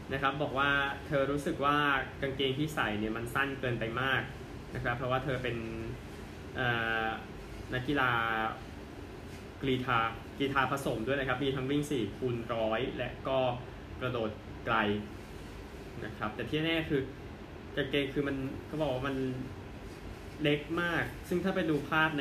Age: 20-39